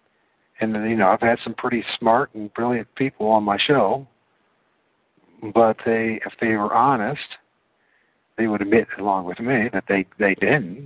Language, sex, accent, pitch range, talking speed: English, male, American, 105-140 Hz, 160 wpm